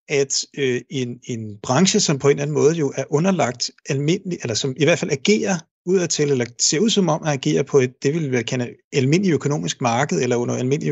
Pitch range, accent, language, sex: 130-170 Hz, native, Danish, male